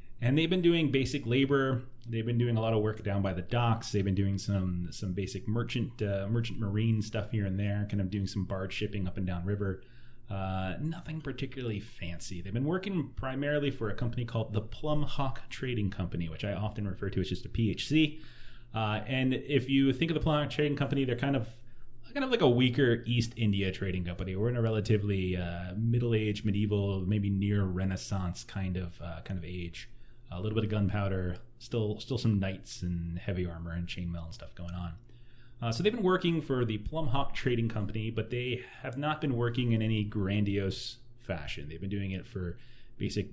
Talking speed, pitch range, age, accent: 210 wpm, 100-120 Hz, 30-49, American